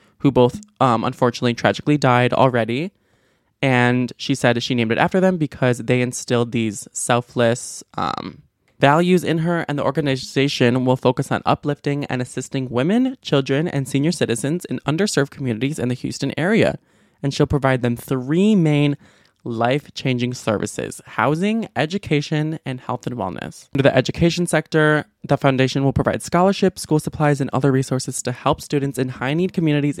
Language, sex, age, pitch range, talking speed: English, male, 20-39, 125-150 Hz, 160 wpm